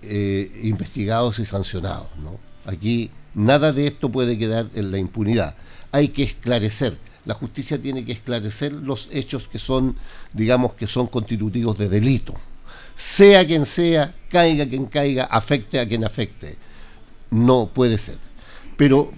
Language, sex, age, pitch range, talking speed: Spanish, male, 50-69, 110-140 Hz, 145 wpm